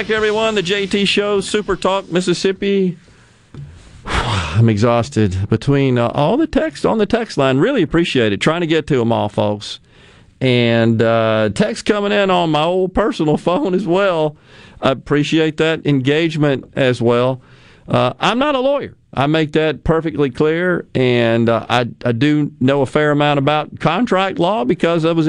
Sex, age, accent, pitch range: male, 40-59, American, 120-180 Hz